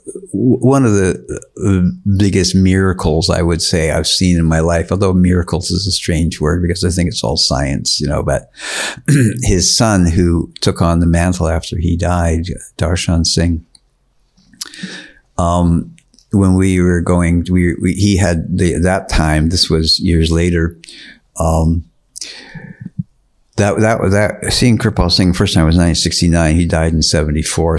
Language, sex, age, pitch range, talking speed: English, male, 60-79, 85-95 Hz, 155 wpm